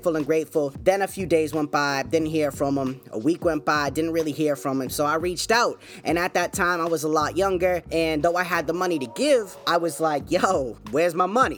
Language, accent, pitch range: English, American, 155-185 Hz